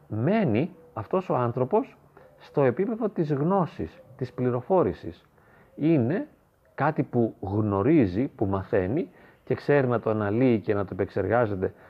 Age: 30-49